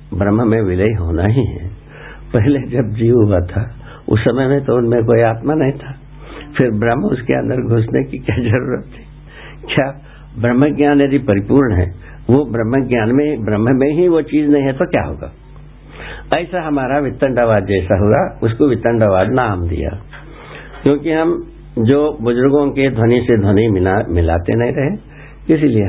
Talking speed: 160 wpm